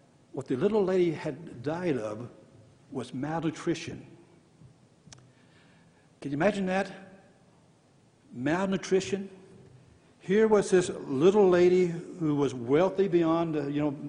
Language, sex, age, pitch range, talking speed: English, male, 60-79, 150-185 Hz, 105 wpm